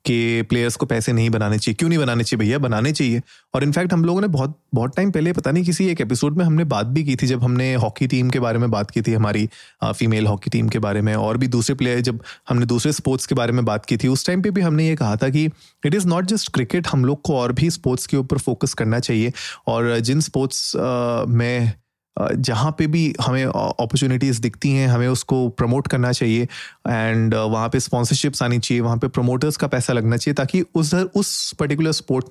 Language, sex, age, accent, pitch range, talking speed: Hindi, male, 30-49, native, 120-150 Hz, 230 wpm